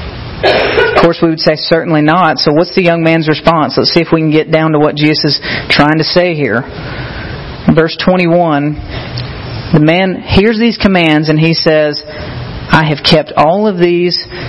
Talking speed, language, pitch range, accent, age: 180 wpm, English, 155-195 Hz, American, 40-59